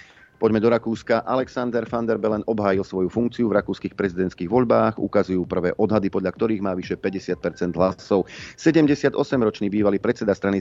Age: 40-59